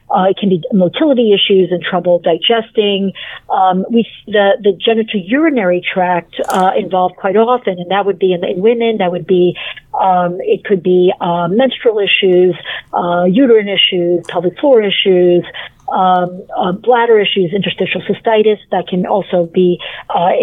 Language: English